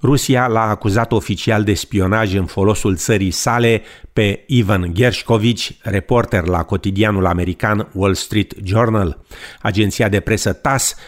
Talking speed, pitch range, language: 130 wpm, 95-115 Hz, Romanian